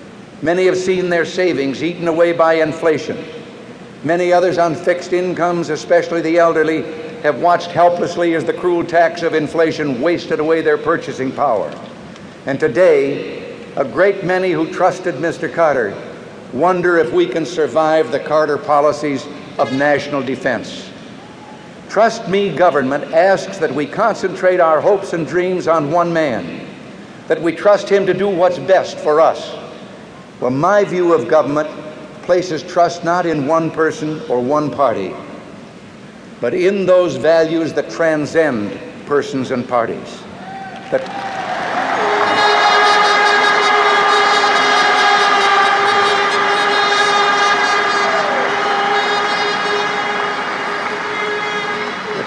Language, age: English, 60-79